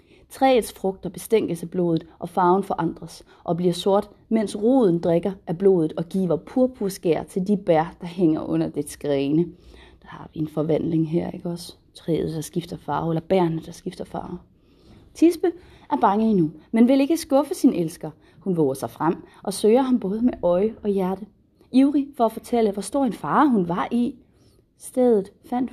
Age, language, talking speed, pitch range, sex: 30-49, Danish, 185 wpm, 175-240 Hz, female